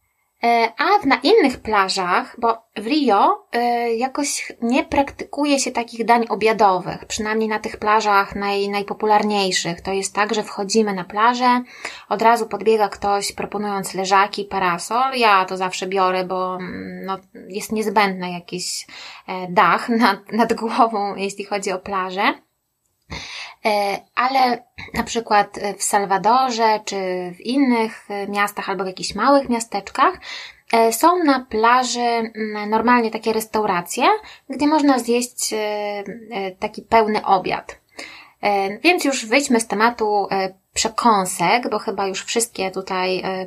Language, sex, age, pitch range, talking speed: Polish, female, 20-39, 195-235 Hz, 120 wpm